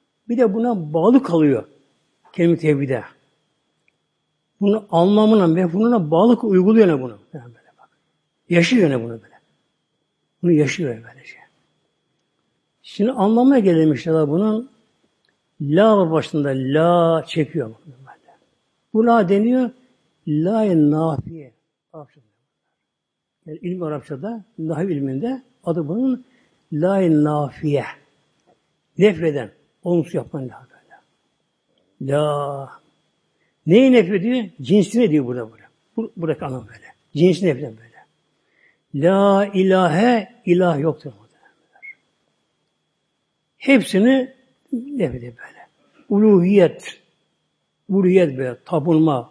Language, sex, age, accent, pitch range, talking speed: Turkish, male, 60-79, native, 150-205 Hz, 95 wpm